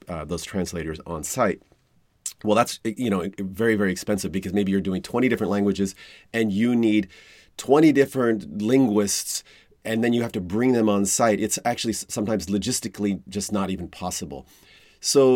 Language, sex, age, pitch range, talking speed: English, male, 30-49, 95-115 Hz, 170 wpm